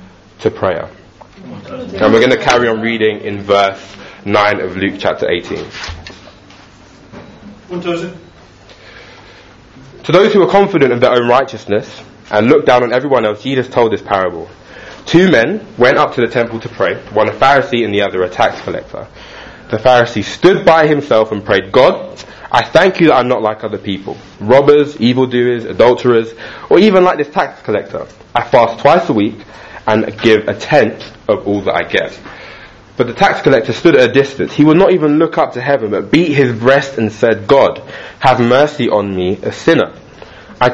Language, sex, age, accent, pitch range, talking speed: English, male, 20-39, British, 105-140 Hz, 180 wpm